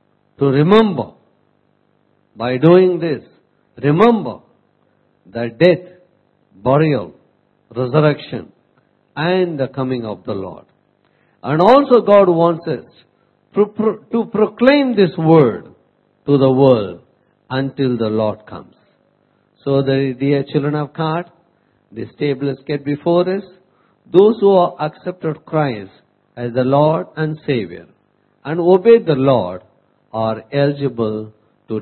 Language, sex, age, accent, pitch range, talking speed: English, male, 50-69, Indian, 125-175 Hz, 115 wpm